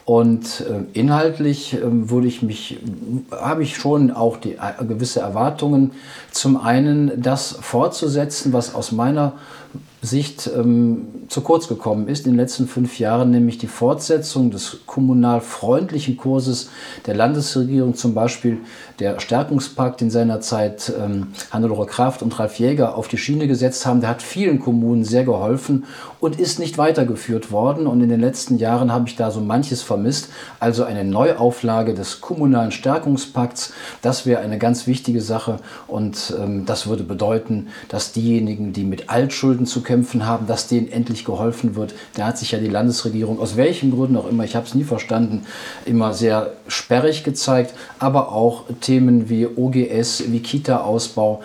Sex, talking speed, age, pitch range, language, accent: male, 155 wpm, 40-59, 115-130 Hz, German, German